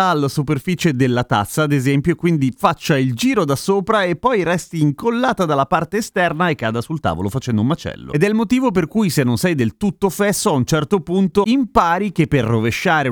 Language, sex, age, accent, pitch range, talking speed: Italian, male, 30-49, native, 120-180 Hz, 215 wpm